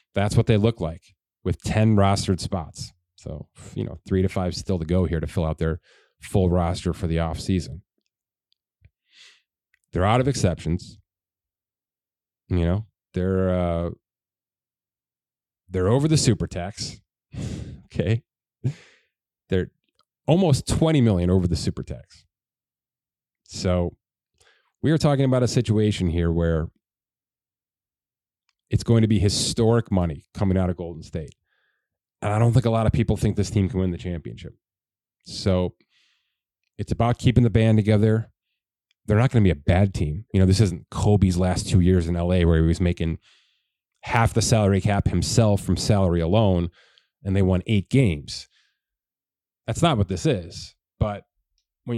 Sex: male